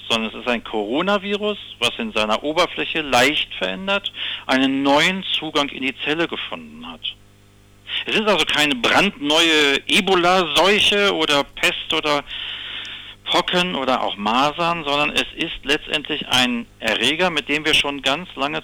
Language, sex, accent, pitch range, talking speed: German, male, German, 115-175 Hz, 140 wpm